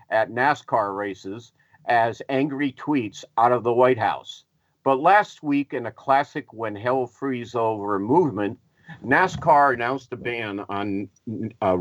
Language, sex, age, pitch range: English, male, 50-69, 105-140 Hz